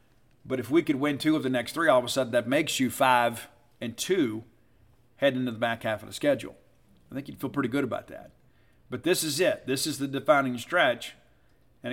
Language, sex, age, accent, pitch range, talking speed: English, male, 50-69, American, 120-150 Hz, 230 wpm